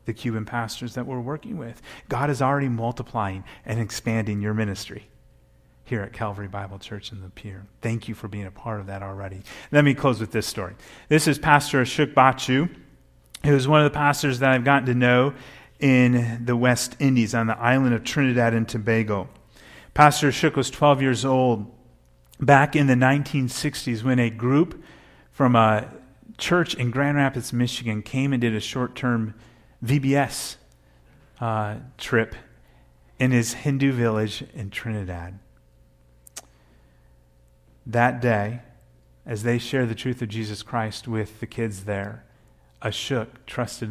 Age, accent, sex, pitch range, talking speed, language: 30-49, American, male, 105-130 Hz, 155 wpm, English